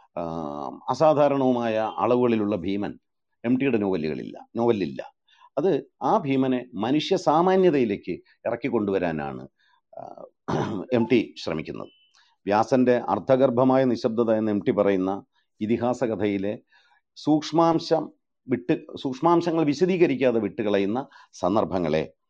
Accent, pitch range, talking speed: native, 105-130 Hz, 75 wpm